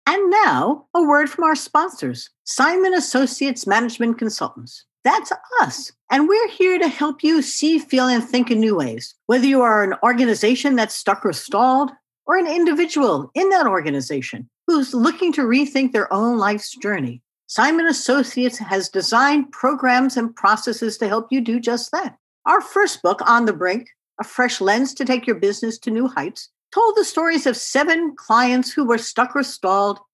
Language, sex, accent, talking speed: English, female, American, 175 wpm